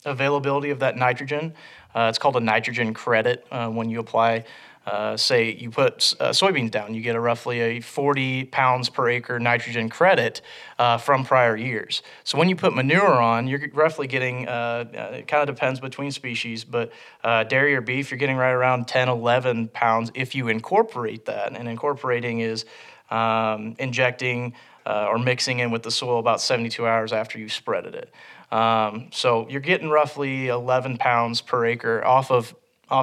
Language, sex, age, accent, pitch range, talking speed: English, male, 30-49, American, 115-135 Hz, 175 wpm